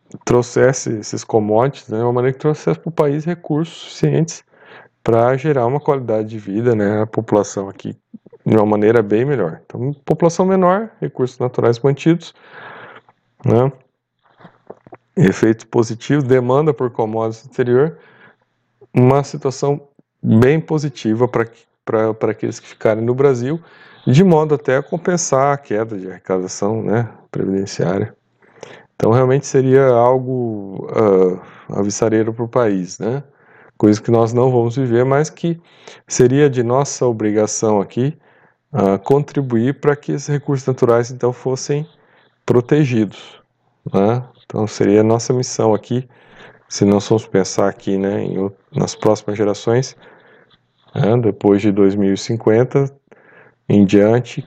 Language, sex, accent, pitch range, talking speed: Portuguese, male, Brazilian, 110-135 Hz, 130 wpm